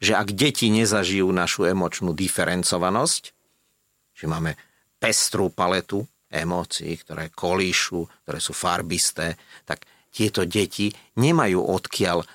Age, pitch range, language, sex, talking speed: 50-69, 85-105 Hz, Slovak, male, 105 wpm